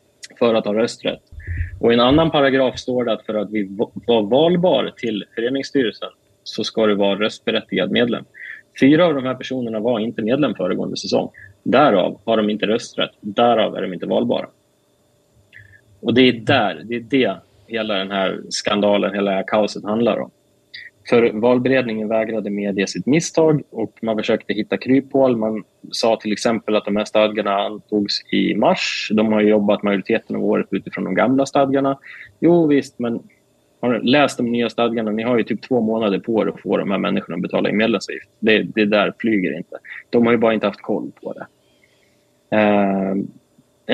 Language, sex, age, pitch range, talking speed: Swedish, male, 30-49, 105-120 Hz, 185 wpm